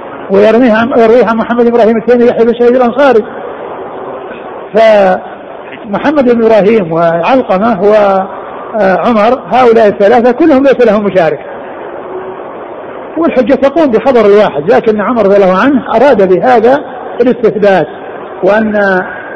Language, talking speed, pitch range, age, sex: Arabic, 100 wpm, 190-235 Hz, 50-69, male